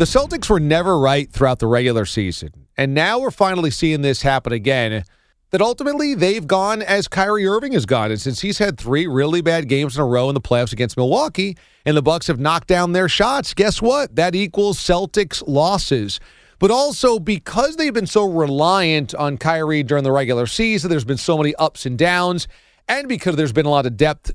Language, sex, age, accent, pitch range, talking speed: English, male, 40-59, American, 135-185 Hz, 205 wpm